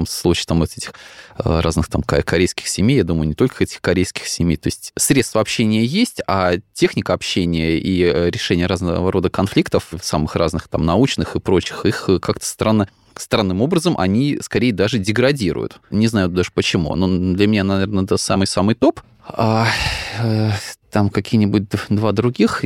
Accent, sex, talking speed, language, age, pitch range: native, male, 155 wpm, Russian, 20-39, 95-110 Hz